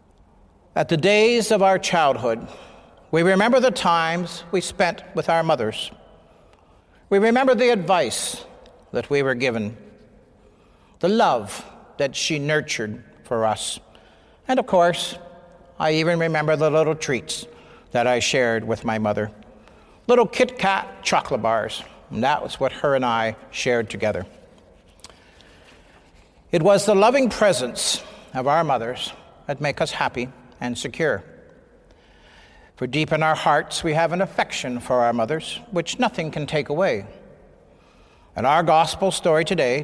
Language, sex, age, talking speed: English, male, 60-79, 145 wpm